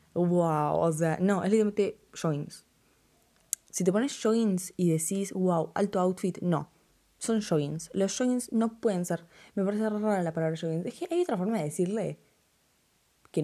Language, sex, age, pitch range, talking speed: Spanish, female, 20-39, 160-200 Hz, 170 wpm